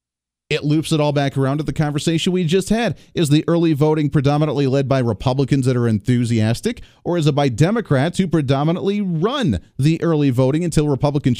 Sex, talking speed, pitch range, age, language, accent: male, 190 wpm, 130-160 Hz, 40-59, English, American